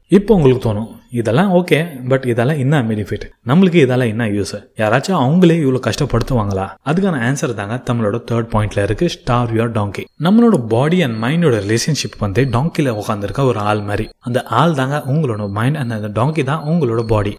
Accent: native